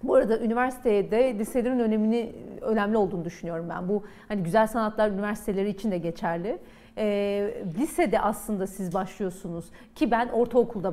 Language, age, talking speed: Turkish, 40-59, 135 wpm